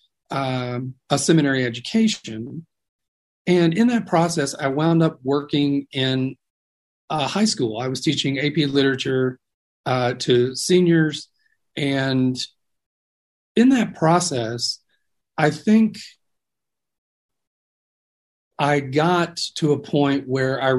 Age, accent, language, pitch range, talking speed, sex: 40-59, American, English, 125-160 Hz, 105 wpm, male